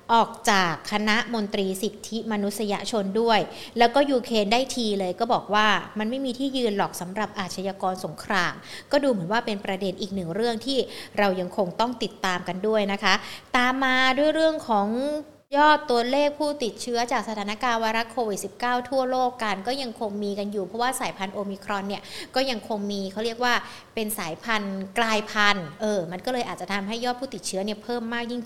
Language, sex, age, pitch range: Thai, female, 60-79, 205-255 Hz